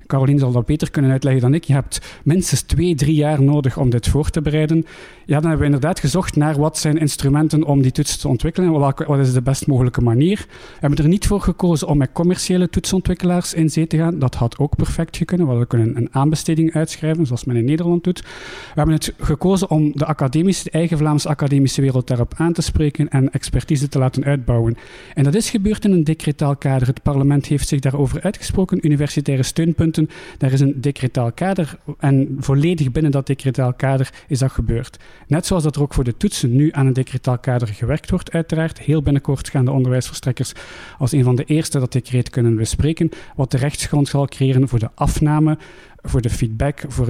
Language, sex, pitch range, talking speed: Dutch, male, 130-160 Hz, 210 wpm